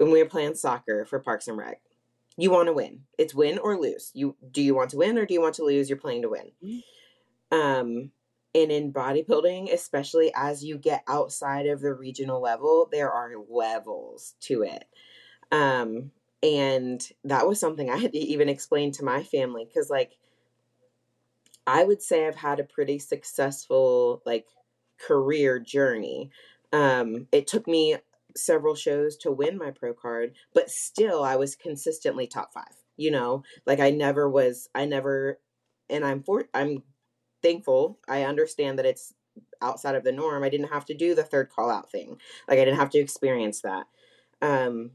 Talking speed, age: 180 wpm, 20-39